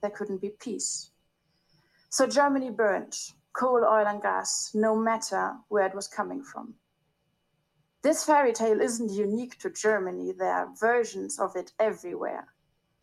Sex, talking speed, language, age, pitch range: female, 145 wpm, English, 30-49, 205-250 Hz